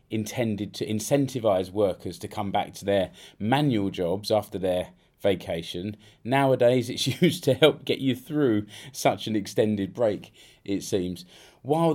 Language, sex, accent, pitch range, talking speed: English, male, British, 95-125 Hz, 145 wpm